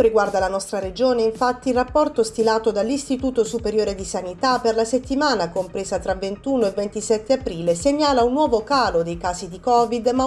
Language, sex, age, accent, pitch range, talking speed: Italian, female, 30-49, native, 200-265 Hz, 180 wpm